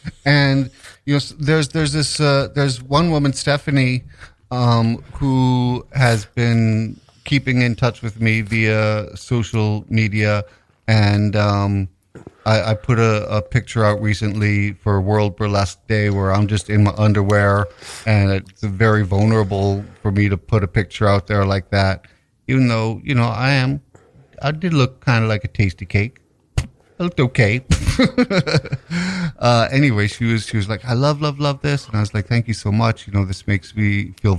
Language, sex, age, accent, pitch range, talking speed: English, male, 50-69, American, 100-125 Hz, 175 wpm